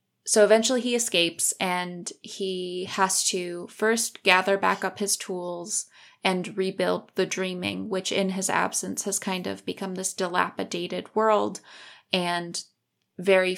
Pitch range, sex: 180-205 Hz, female